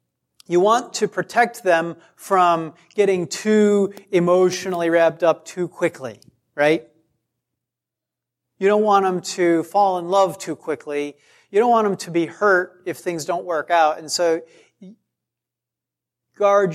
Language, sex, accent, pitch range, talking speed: English, male, American, 125-180 Hz, 140 wpm